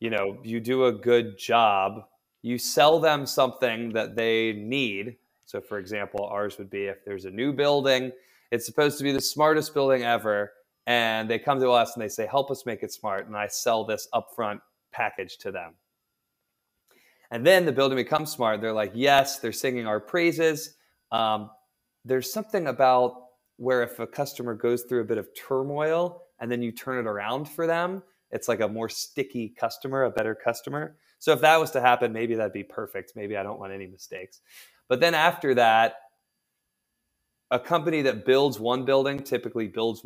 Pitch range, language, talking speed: 110-140 Hz, English, 190 wpm